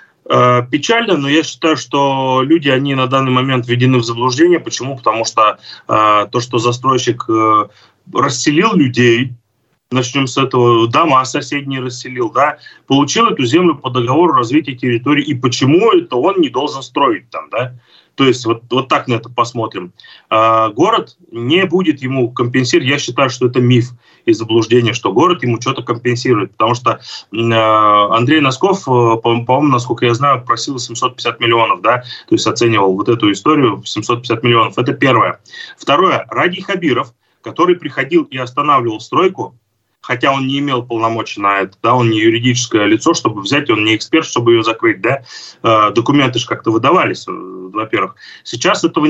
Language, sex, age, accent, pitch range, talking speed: Russian, male, 30-49, native, 115-145 Hz, 160 wpm